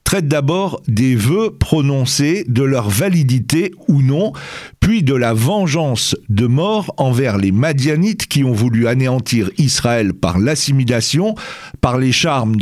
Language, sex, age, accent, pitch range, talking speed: French, male, 50-69, French, 120-165 Hz, 140 wpm